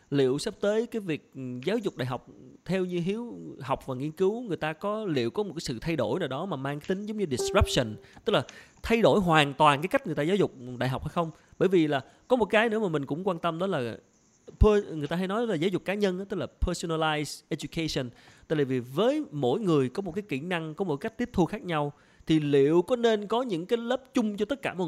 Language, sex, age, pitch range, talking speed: Vietnamese, male, 20-39, 145-210 Hz, 260 wpm